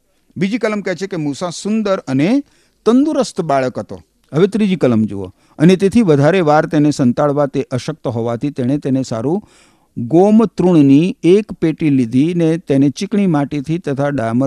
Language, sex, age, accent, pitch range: Gujarati, male, 50-69, native, 115-180 Hz